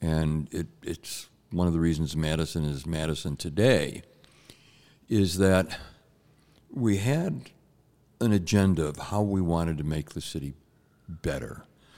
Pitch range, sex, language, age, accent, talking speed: 85-105 Hz, male, English, 60-79, American, 125 wpm